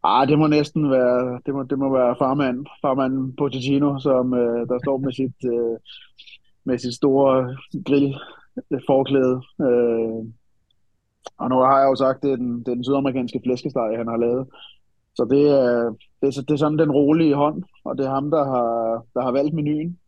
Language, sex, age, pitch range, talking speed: Danish, male, 30-49, 120-145 Hz, 175 wpm